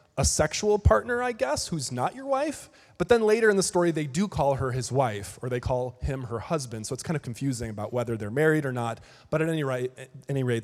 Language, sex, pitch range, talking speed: English, male, 115-155 Hz, 255 wpm